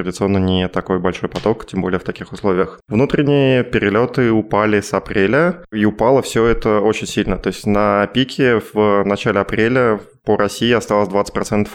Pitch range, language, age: 105-125 Hz, Russian, 20-39